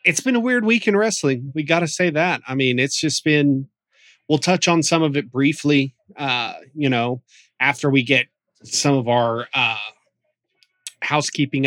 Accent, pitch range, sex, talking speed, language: American, 120-150 Hz, male, 180 wpm, English